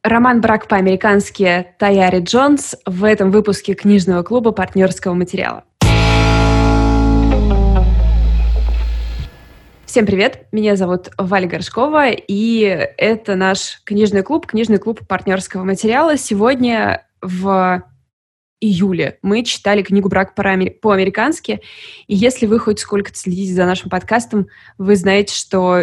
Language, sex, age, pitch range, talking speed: Russian, female, 20-39, 185-225 Hz, 110 wpm